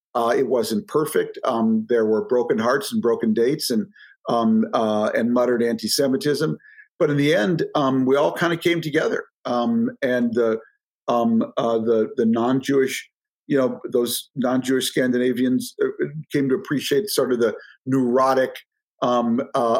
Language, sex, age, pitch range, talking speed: English, male, 50-69, 120-170 Hz, 155 wpm